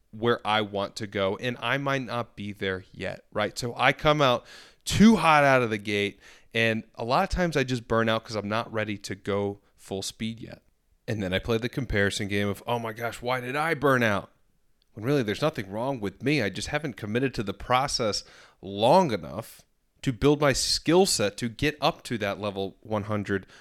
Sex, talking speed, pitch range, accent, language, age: male, 215 wpm, 100-125 Hz, American, English, 30-49